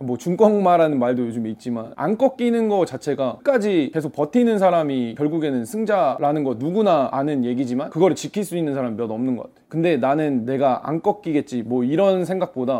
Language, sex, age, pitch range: Korean, male, 20-39, 125-185 Hz